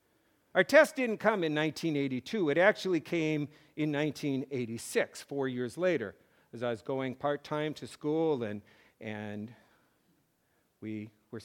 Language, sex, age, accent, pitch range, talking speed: English, male, 60-79, American, 130-185 Hz, 130 wpm